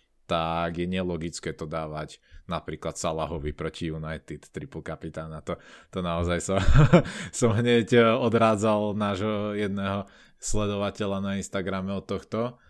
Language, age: Slovak, 20-39